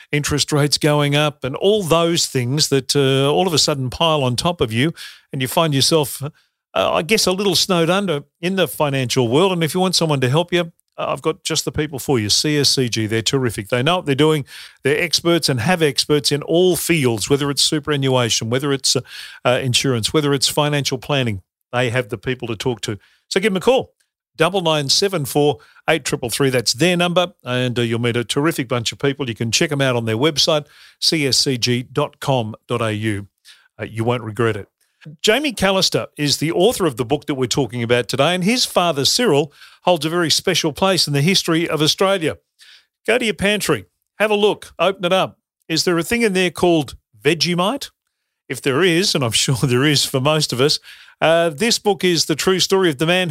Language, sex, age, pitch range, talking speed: English, male, 50-69, 130-175 Hz, 210 wpm